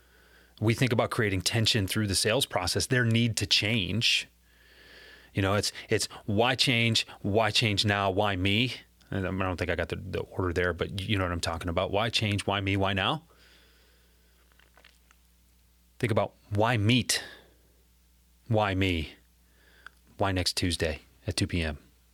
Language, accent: English, American